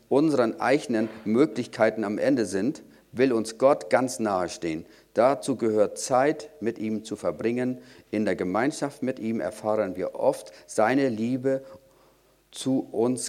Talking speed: 140 wpm